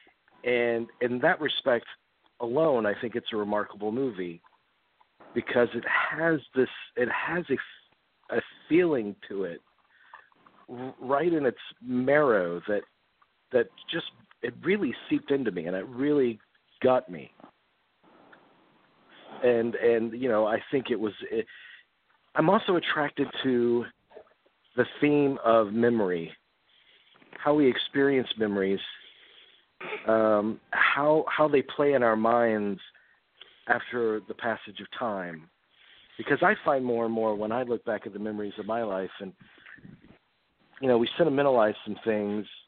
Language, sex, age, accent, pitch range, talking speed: English, male, 50-69, American, 105-130 Hz, 130 wpm